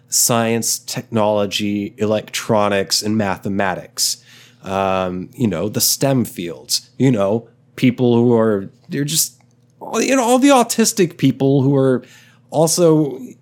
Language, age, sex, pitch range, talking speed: English, 30-49, male, 110-130 Hz, 120 wpm